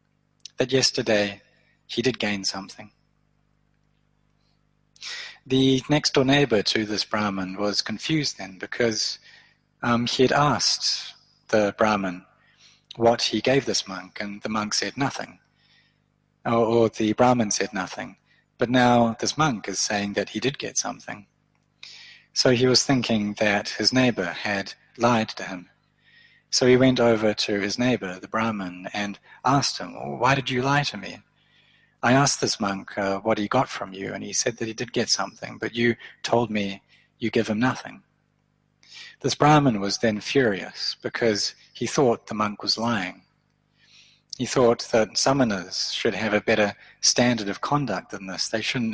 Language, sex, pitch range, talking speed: English, male, 105-125 Hz, 160 wpm